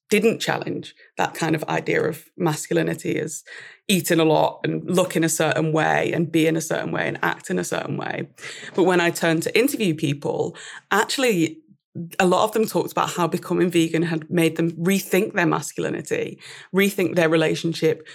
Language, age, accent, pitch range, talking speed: English, 20-39, British, 160-195 Hz, 185 wpm